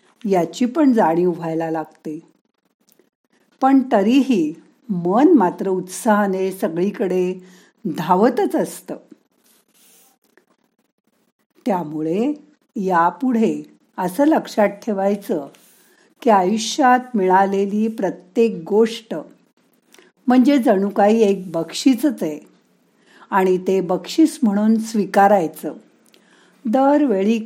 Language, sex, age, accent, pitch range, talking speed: Marathi, female, 50-69, native, 180-240 Hz, 75 wpm